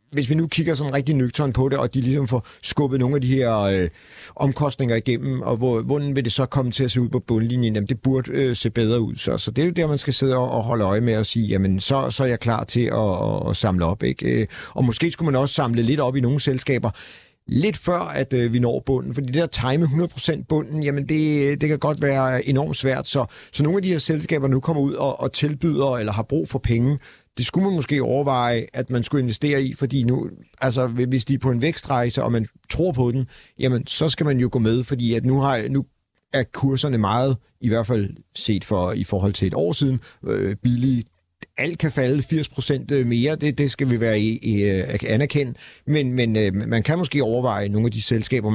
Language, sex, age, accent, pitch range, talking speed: Danish, male, 40-59, native, 115-140 Hz, 235 wpm